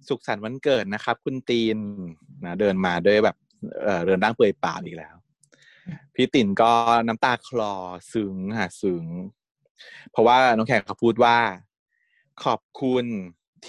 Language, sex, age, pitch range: Thai, male, 20-39, 100-145 Hz